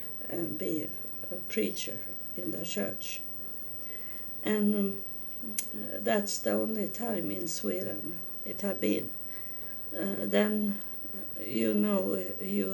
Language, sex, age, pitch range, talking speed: English, female, 60-79, 175-210 Hz, 105 wpm